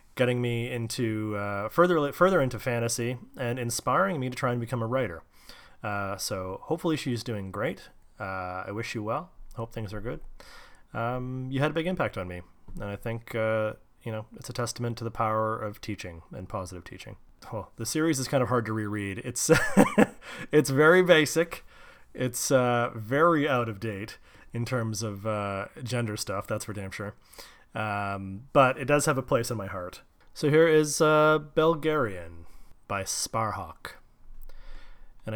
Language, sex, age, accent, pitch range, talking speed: English, male, 30-49, American, 105-135 Hz, 180 wpm